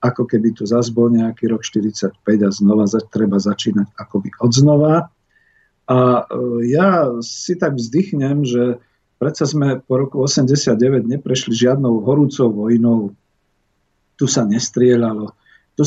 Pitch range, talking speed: 110-130 Hz, 120 wpm